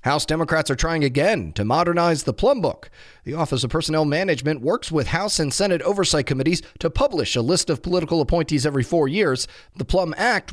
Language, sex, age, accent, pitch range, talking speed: English, male, 30-49, American, 130-175 Hz, 200 wpm